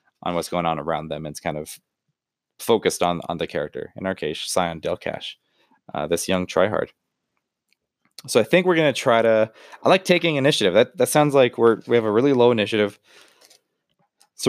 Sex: male